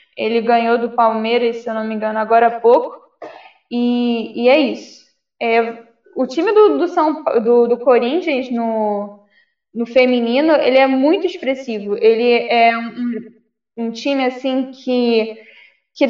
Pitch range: 230-280 Hz